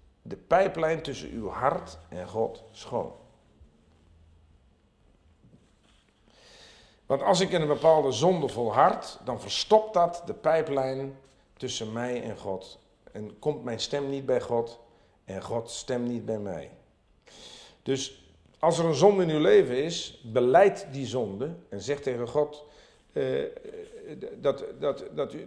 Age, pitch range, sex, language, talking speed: 50-69, 115-190 Hz, male, Dutch, 140 wpm